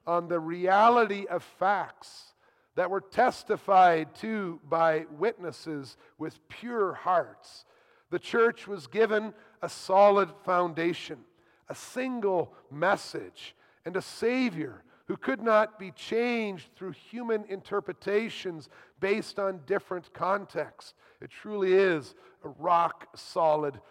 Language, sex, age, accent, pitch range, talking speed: English, male, 50-69, American, 145-200 Hz, 110 wpm